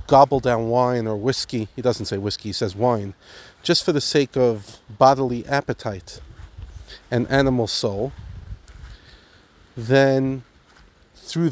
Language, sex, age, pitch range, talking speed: English, male, 40-59, 90-130 Hz, 125 wpm